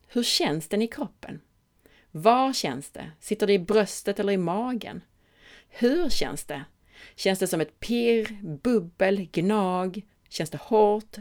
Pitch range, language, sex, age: 155-210 Hz, Swedish, female, 30-49